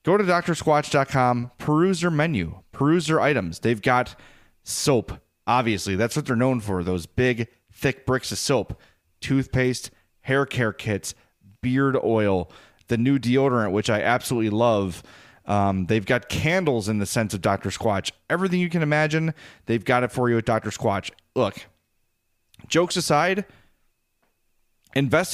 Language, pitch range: English, 105-145 Hz